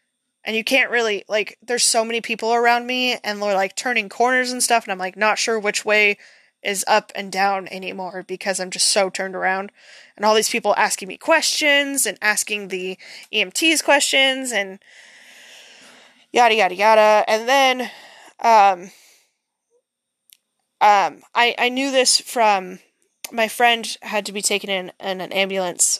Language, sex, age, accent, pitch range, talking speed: English, female, 20-39, American, 195-245 Hz, 165 wpm